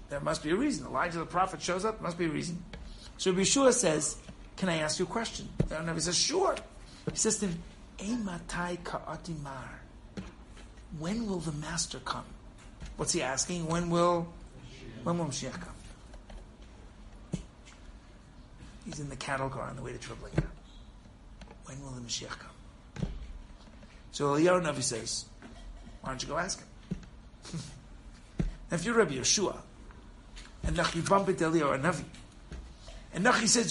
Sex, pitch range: male, 130-190 Hz